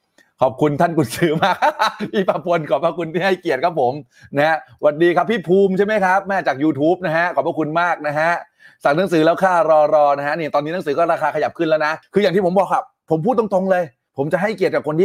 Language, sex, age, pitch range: Thai, male, 30-49, 145-185 Hz